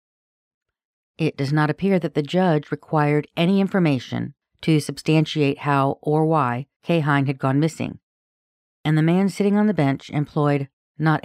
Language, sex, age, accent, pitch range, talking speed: English, female, 50-69, American, 135-160 Hz, 155 wpm